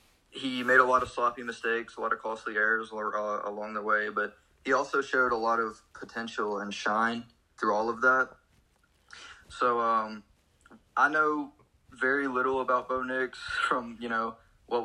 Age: 20-39